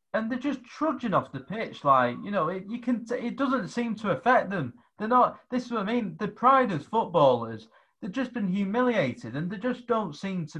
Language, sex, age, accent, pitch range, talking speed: English, male, 30-49, British, 145-220 Hz, 230 wpm